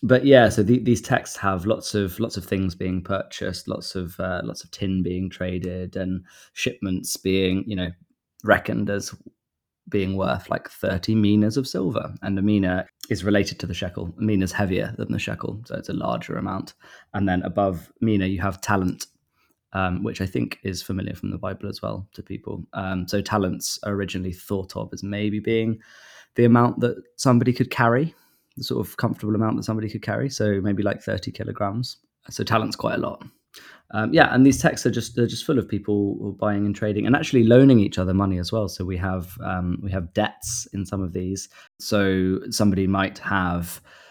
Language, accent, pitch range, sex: English, British, 95-110 Hz, male